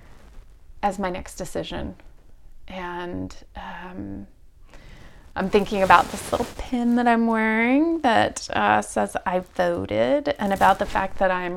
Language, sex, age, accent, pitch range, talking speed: English, female, 30-49, American, 180-220 Hz, 140 wpm